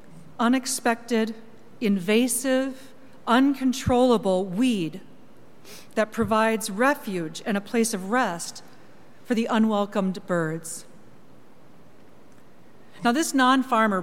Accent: American